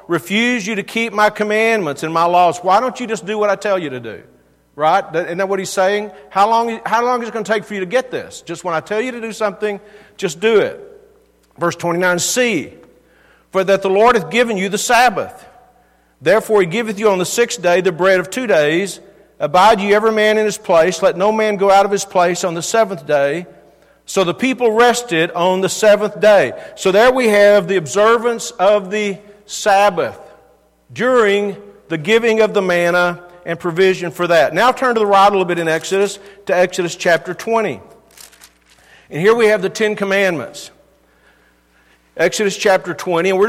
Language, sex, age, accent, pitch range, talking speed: English, male, 50-69, American, 175-215 Hz, 205 wpm